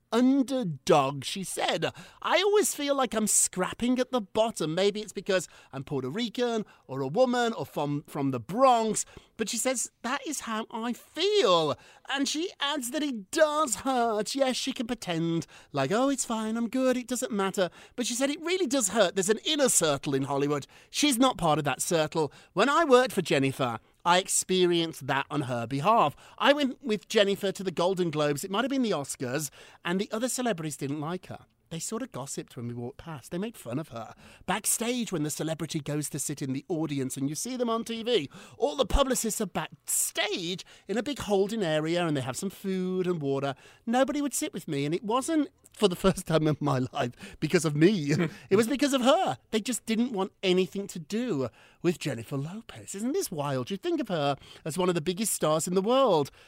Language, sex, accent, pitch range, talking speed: English, male, British, 155-240 Hz, 210 wpm